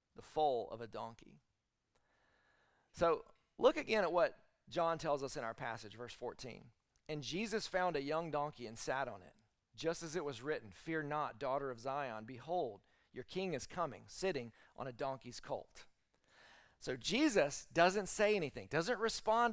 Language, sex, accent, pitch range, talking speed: English, male, American, 135-185 Hz, 165 wpm